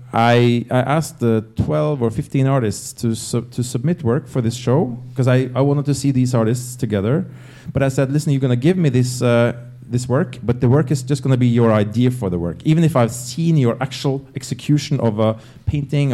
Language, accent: English, Norwegian